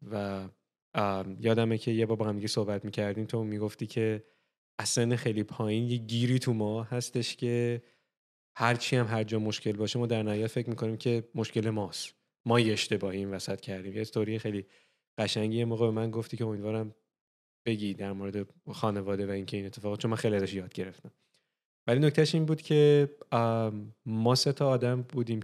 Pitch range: 105-115 Hz